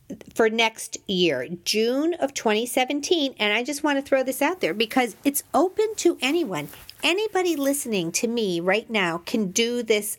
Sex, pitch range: female, 190-260 Hz